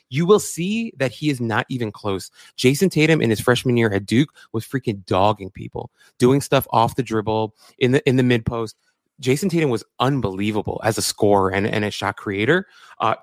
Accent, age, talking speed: American, 20-39, 205 wpm